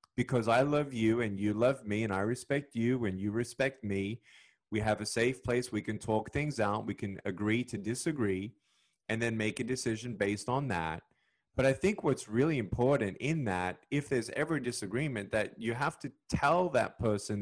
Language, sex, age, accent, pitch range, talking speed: English, male, 30-49, American, 105-125 Hz, 205 wpm